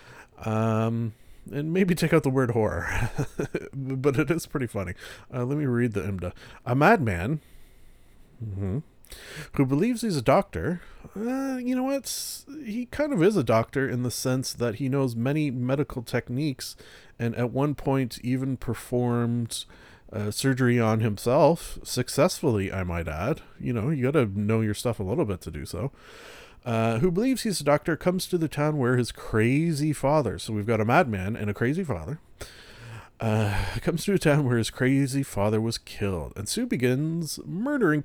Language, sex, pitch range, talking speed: English, male, 110-145 Hz, 175 wpm